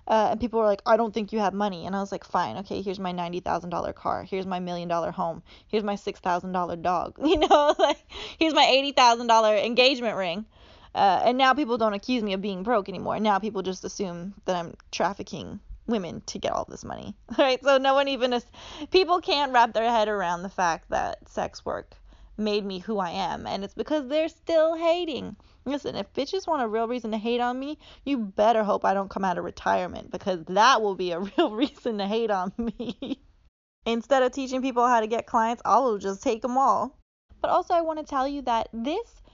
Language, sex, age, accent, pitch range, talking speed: English, female, 10-29, American, 205-270 Hz, 220 wpm